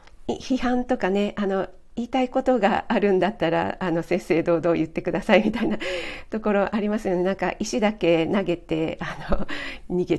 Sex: female